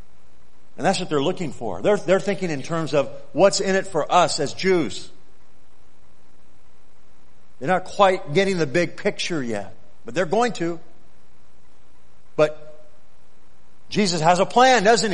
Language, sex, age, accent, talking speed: English, male, 50-69, American, 145 wpm